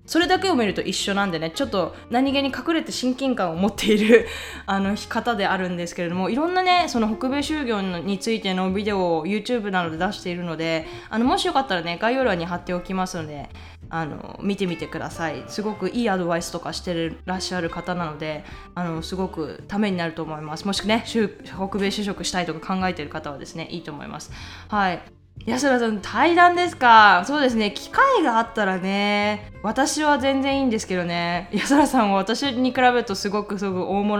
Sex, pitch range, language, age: female, 170-235 Hz, Japanese, 20-39